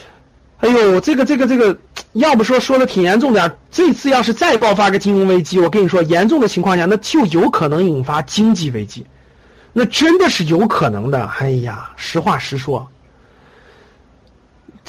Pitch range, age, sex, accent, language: 180-245 Hz, 50-69, male, native, Chinese